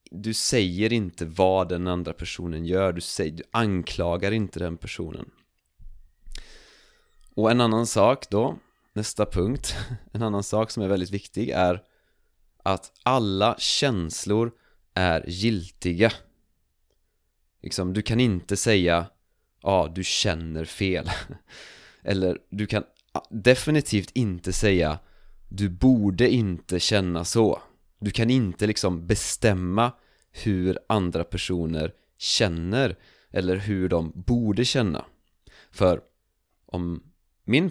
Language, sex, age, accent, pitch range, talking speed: Swedish, male, 20-39, native, 90-115 Hz, 115 wpm